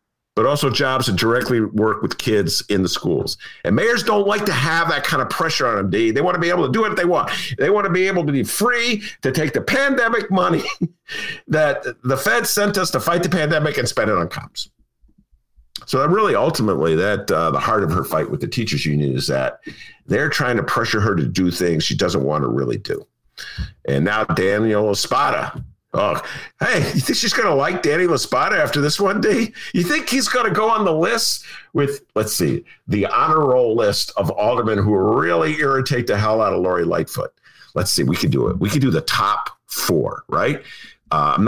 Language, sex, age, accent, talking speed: English, male, 50-69, American, 215 wpm